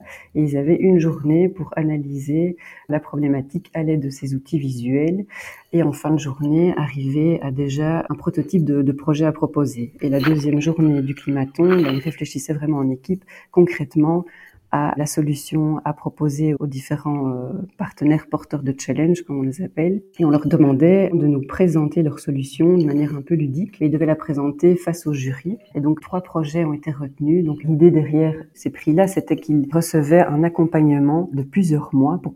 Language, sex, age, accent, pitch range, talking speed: French, female, 40-59, French, 145-165 Hz, 180 wpm